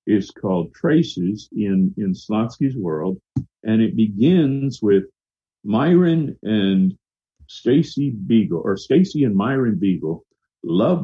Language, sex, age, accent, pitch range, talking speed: English, male, 50-69, American, 100-140 Hz, 115 wpm